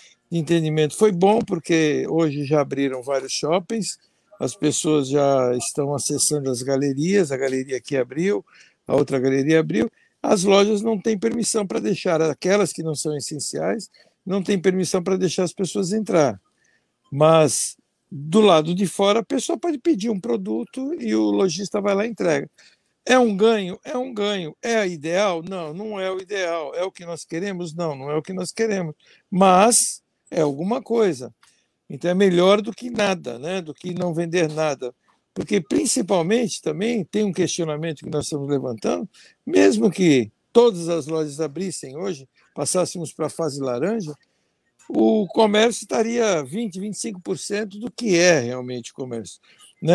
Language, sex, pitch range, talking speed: Portuguese, male, 155-205 Hz, 165 wpm